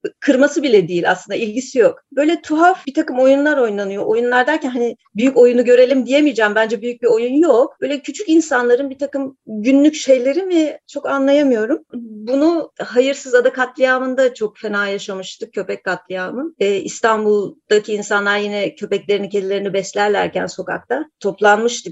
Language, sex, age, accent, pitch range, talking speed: Turkish, female, 40-59, native, 205-275 Hz, 140 wpm